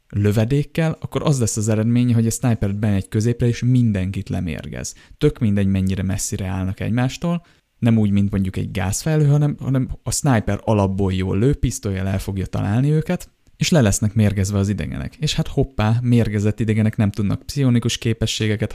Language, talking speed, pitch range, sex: Hungarian, 170 wpm, 95-120 Hz, male